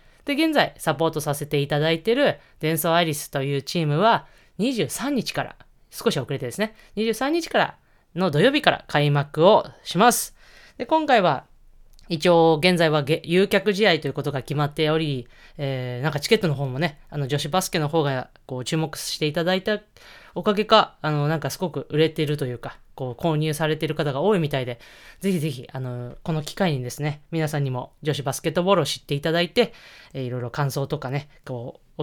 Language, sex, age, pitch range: Japanese, female, 20-39, 145-180 Hz